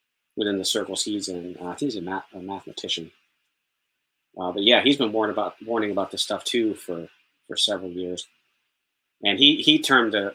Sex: male